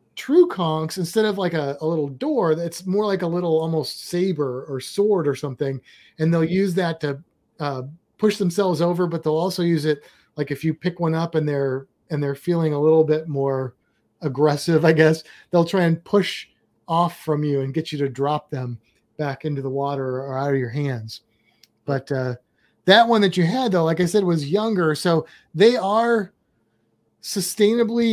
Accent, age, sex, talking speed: American, 30-49, male, 195 wpm